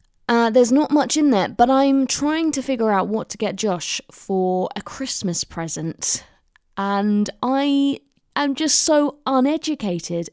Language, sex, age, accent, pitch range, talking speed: English, female, 20-39, British, 180-260 Hz, 150 wpm